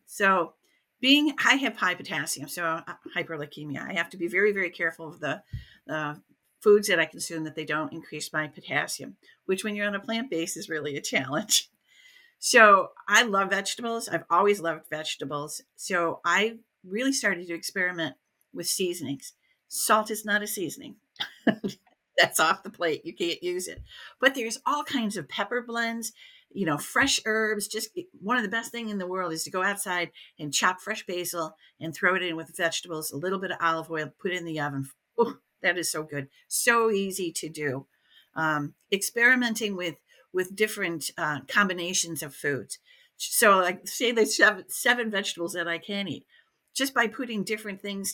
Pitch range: 165-220 Hz